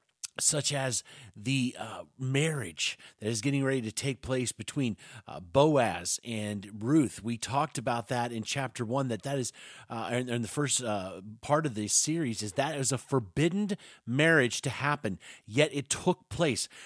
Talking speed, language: 180 wpm, English